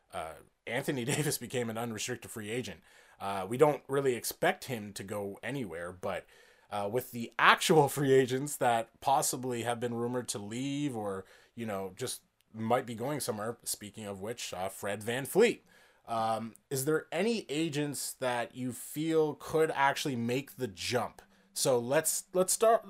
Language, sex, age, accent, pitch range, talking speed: English, male, 20-39, American, 120-150 Hz, 165 wpm